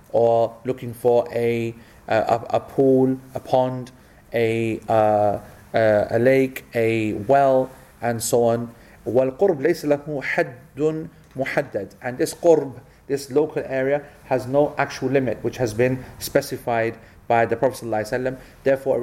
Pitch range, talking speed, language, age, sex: 115-135 Hz, 125 wpm, English, 30-49, male